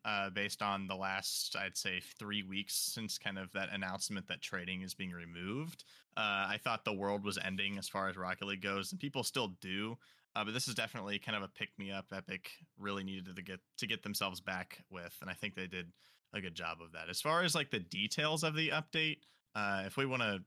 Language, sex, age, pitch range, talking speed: English, male, 20-39, 95-125 Hz, 230 wpm